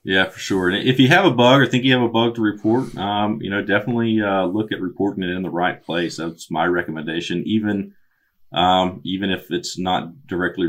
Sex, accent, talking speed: male, American, 225 wpm